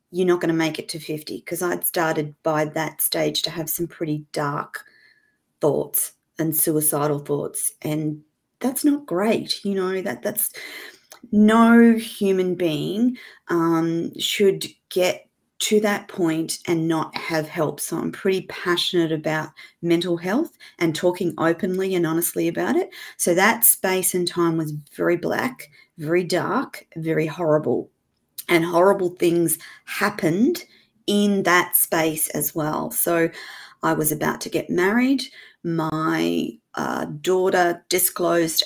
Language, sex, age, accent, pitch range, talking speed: English, female, 30-49, Australian, 155-195 Hz, 140 wpm